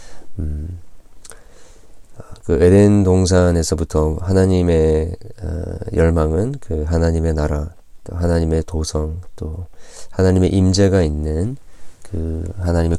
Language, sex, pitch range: Korean, male, 80-95 Hz